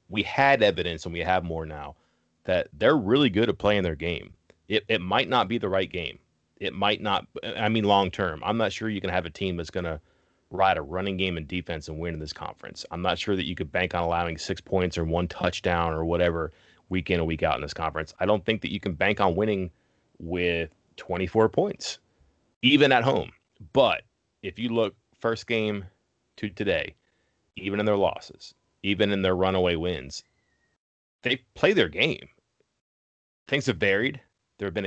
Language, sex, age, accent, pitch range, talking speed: English, male, 30-49, American, 85-100 Hz, 205 wpm